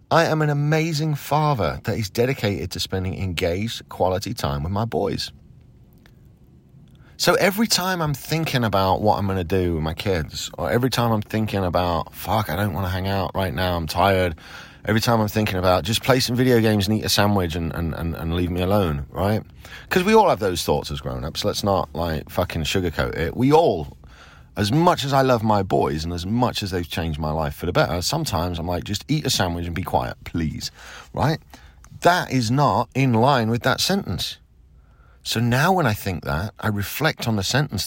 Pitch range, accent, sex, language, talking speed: 80-120 Hz, British, male, English, 210 wpm